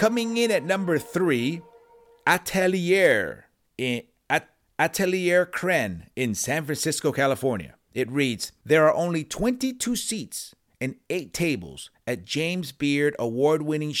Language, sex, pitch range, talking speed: English, male, 130-175 Hz, 120 wpm